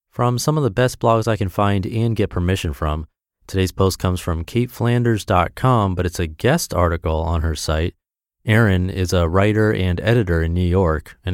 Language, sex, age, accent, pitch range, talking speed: English, male, 30-49, American, 85-115 Hz, 190 wpm